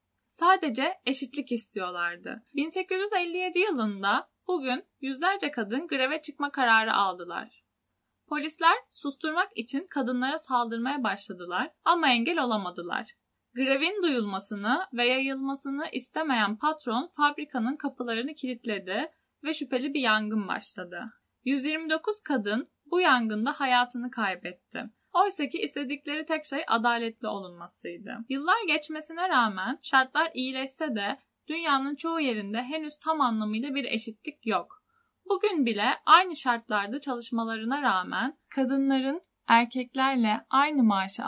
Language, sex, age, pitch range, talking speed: Turkish, female, 10-29, 230-300 Hz, 105 wpm